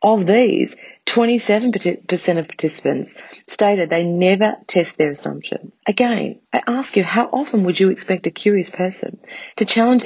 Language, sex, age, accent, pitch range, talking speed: English, female, 40-59, Australian, 160-210 Hz, 150 wpm